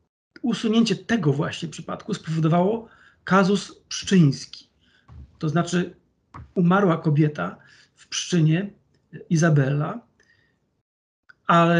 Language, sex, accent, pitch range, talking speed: Polish, male, native, 160-195 Hz, 75 wpm